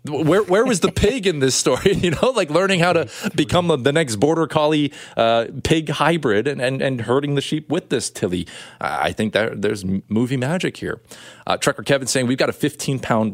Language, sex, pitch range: English, male, 105-145 Hz